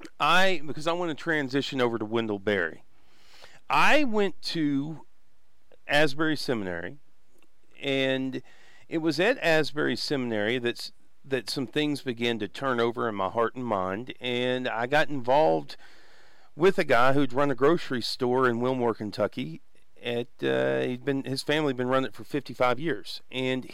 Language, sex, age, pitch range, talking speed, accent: English, male, 40-59, 115-150 Hz, 155 wpm, American